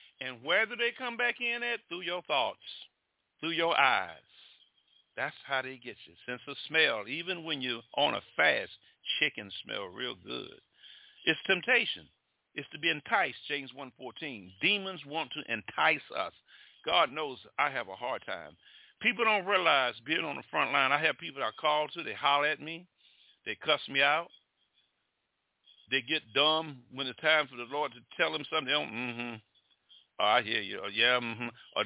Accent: American